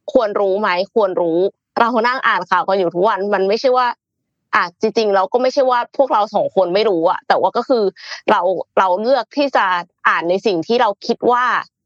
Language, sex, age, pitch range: Thai, female, 20-39, 175-235 Hz